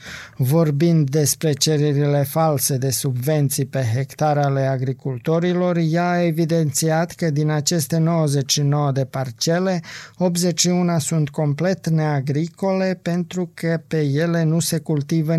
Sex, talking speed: male, 115 wpm